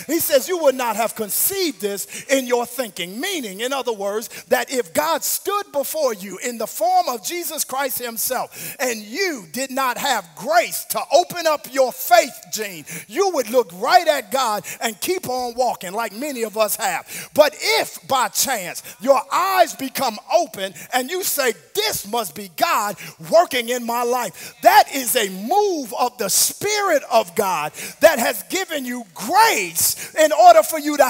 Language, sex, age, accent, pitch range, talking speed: English, male, 40-59, American, 245-340 Hz, 180 wpm